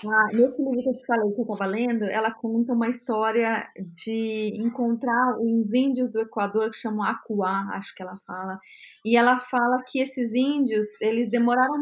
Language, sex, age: Portuguese, female, 20-39